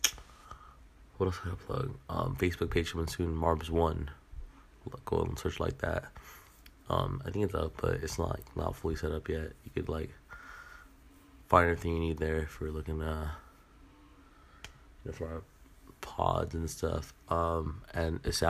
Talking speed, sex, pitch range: 170 wpm, male, 75-85 Hz